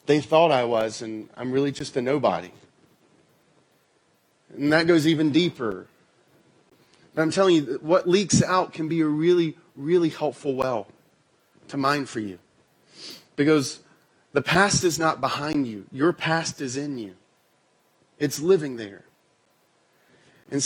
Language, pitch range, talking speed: English, 155-215 Hz, 140 wpm